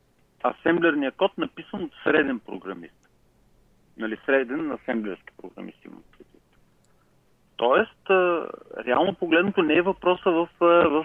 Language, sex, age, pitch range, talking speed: Bulgarian, male, 40-59, 120-195 Hz, 100 wpm